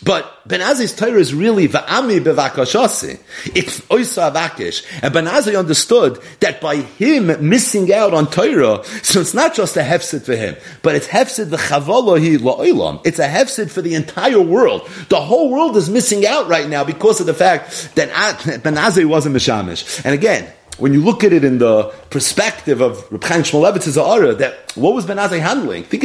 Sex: male